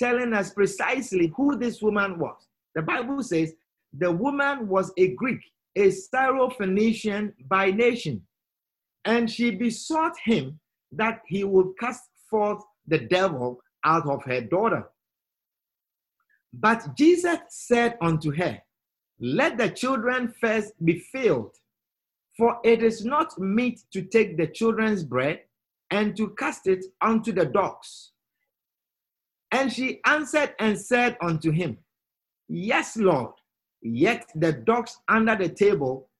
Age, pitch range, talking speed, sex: 50-69, 155-230 Hz, 130 wpm, male